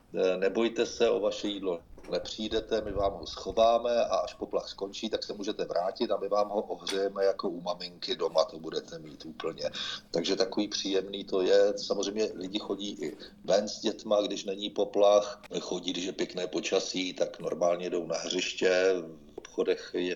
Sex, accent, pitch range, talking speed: male, native, 90-105 Hz, 170 wpm